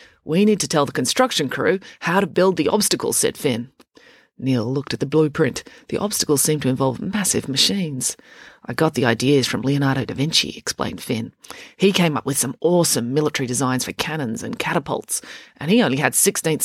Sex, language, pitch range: female, English, 135-190 Hz